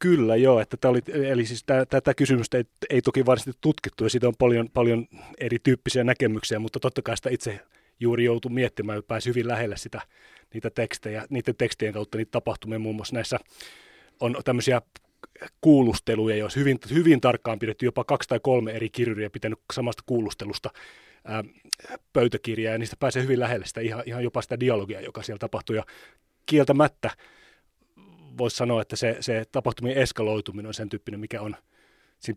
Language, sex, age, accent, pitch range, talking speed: Finnish, male, 30-49, native, 110-125 Hz, 170 wpm